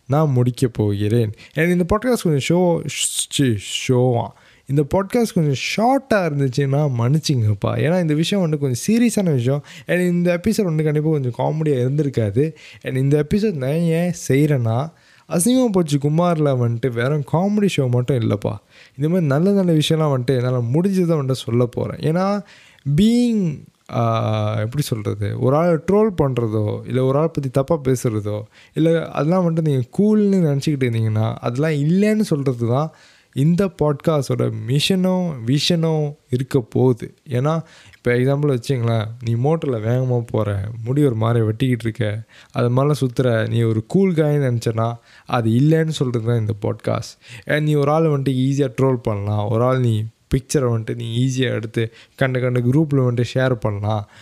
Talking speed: 150 wpm